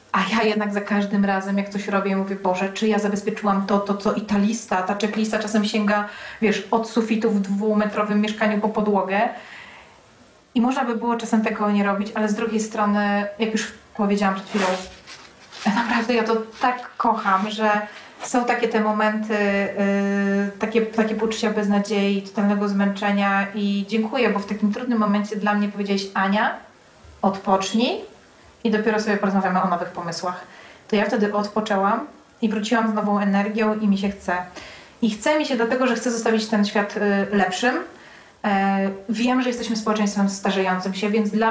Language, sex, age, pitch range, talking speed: Polish, female, 30-49, 200-220 Hz, 170 wpm